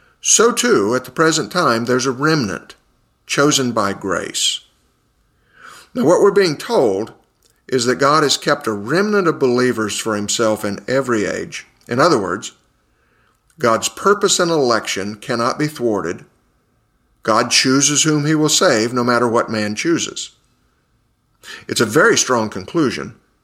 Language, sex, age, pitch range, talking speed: English, male, 50-69, 110-140 Hz, 145 wpm